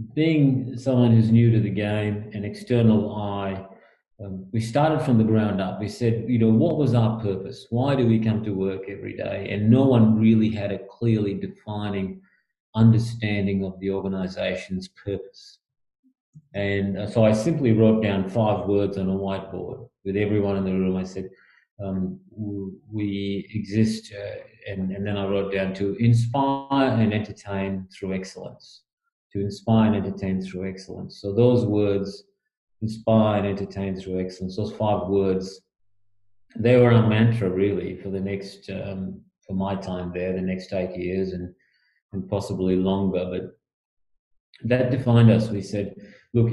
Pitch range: 95-115 Hz